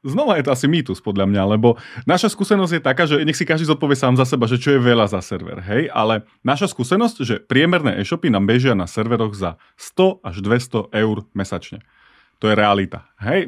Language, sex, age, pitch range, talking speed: Slovak, male, 30-49, 100-125 Hz, 210 wpm